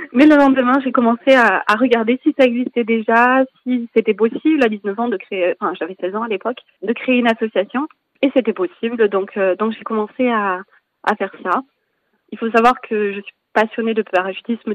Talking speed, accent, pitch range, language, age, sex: 210 wpm, French, 205-245 Hz, French, 20-39, female